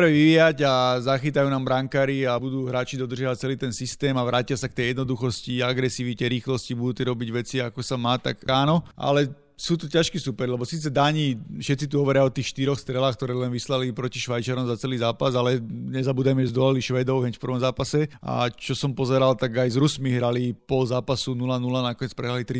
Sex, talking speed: male, 200 wpm